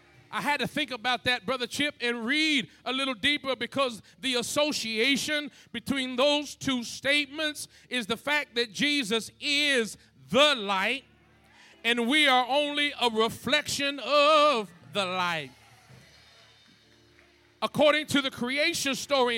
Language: English